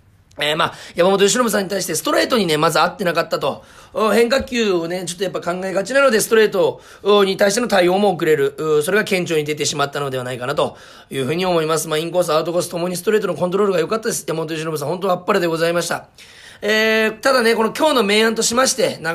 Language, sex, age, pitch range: Japanese, male, 40-59, 165-225 Hz